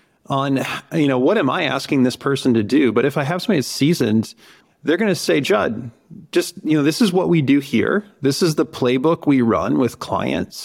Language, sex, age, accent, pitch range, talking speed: English, male, 30-49, American, 120-150 Hz, 215 wpm